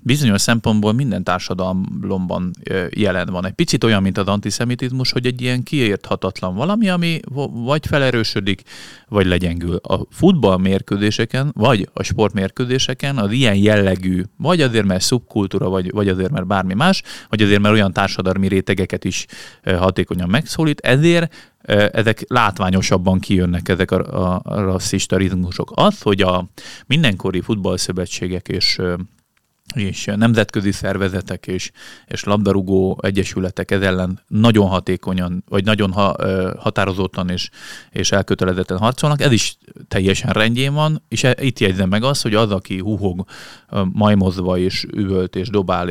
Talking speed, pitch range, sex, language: 135 wpm, 95-115 Hz, male, Hungarian